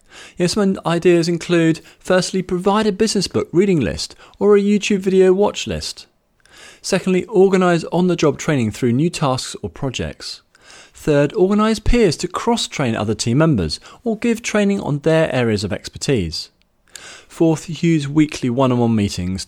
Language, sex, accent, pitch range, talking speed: English, male, British, 105-180 Hz, 145 wpm